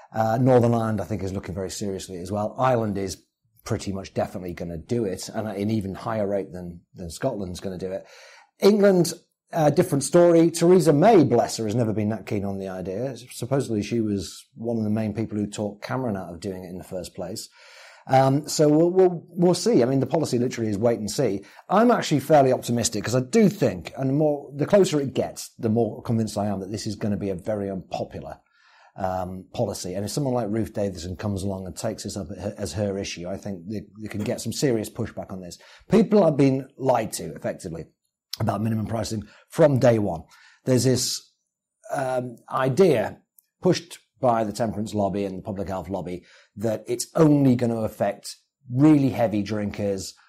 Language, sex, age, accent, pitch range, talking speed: English, male, 30-49, British, 100-130 Hz, 210 wpm